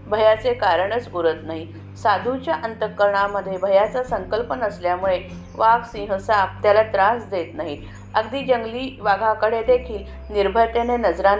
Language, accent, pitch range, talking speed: Marathi, native, 190-240 Hz, 110 wpm